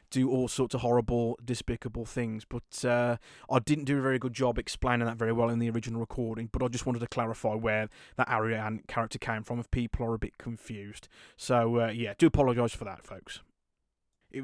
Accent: British